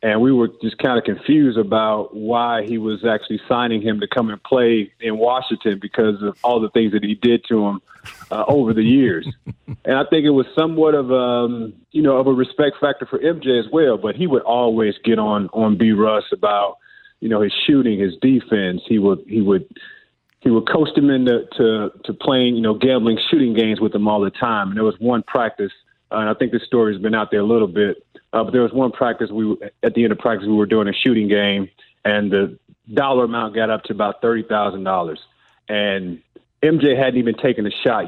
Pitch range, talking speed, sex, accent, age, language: 110-125 Hz, 225 wpm, male, American, 30-49, English